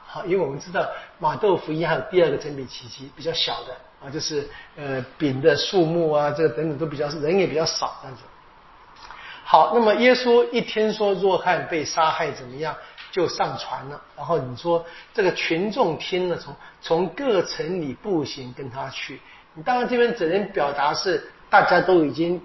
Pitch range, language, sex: 150-240 Hz, Chinese, male